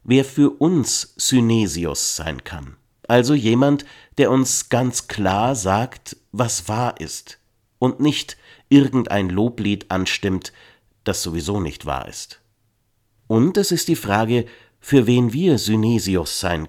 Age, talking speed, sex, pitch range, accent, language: 50-69, 130 wpm, male, 100-125 Hz, German, German